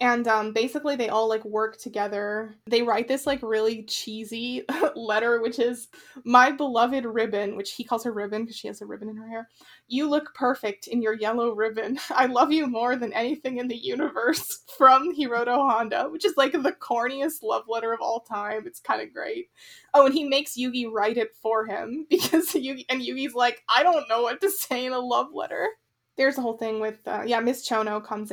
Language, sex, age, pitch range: English, female, 20-39, 220-260 Hz